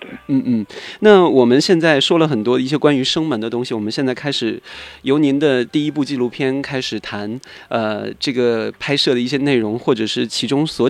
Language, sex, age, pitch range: Chinese, male, 20-39, 115-150 Hz